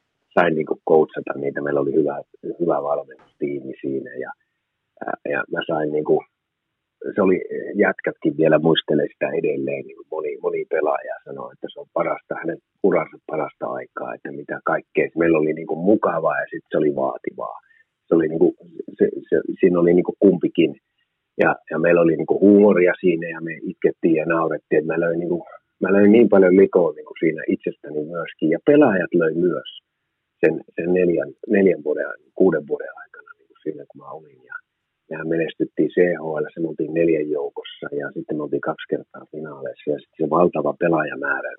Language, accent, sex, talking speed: Finnish, native, male, 160 wpm